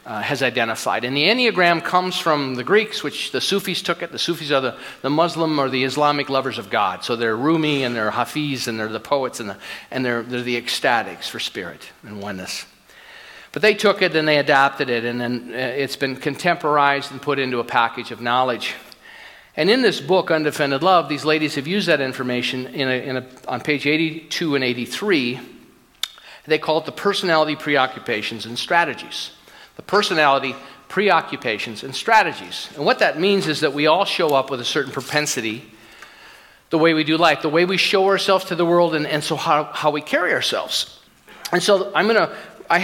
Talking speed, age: 200 wpm, 40-59